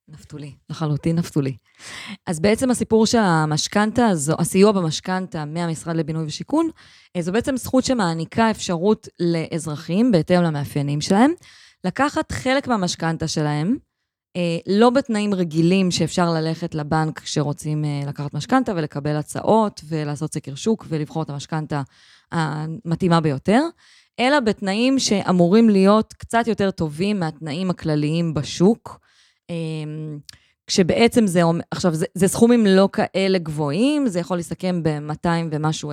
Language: Hebrew